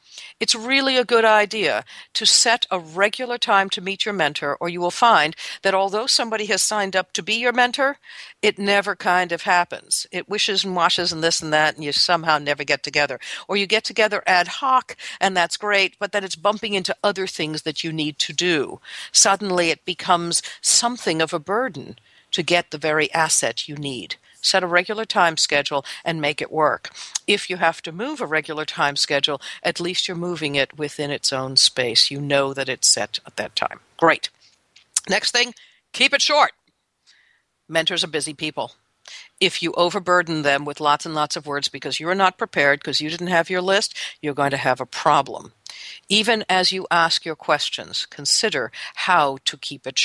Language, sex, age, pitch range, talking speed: English, female, 60-79, 155-205 Hz, 195 wpm